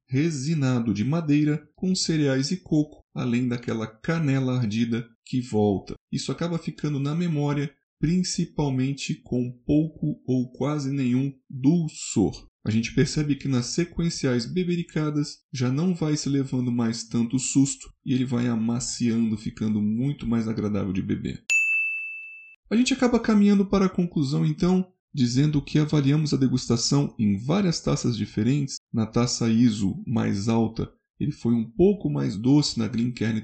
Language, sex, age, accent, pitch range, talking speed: Portuguese, male, 20-39, Brazilian, 120-160 Hz, 145 wpm